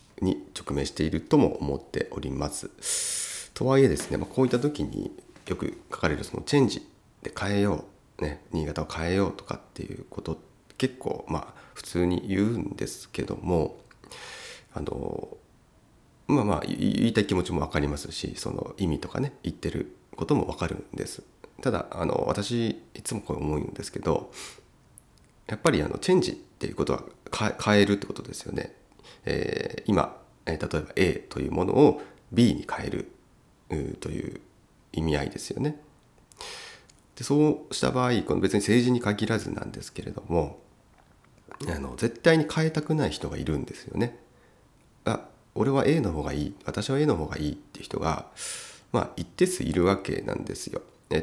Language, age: Japanese, 40-59